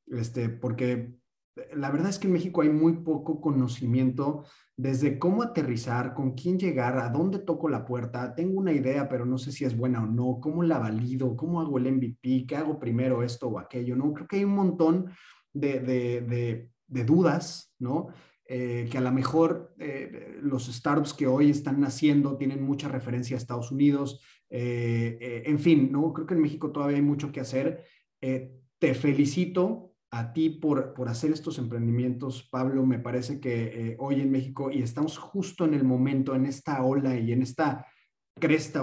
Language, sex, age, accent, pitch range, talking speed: Spanish, male, 30-49, Mexican, 125-150 Hz, 190 wpm